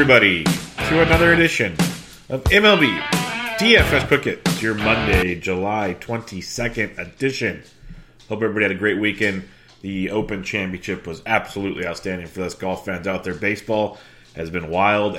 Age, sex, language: 30-49, male, English